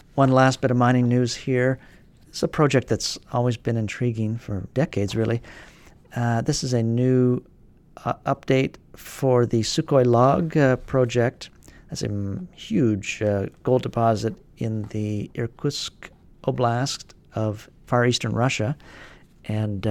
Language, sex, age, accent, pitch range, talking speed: English, male, 50-69, American, 105-130 Hz, 135 wpm